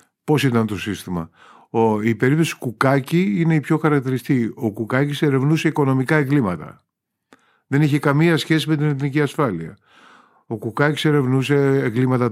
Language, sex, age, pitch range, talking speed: Greek, male, 50-69, 115-155 Hz, 140 wpm